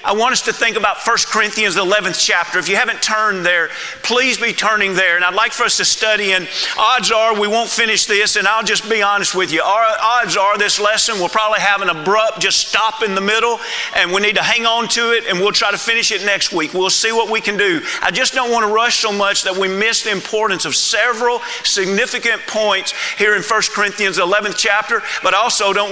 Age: 40-59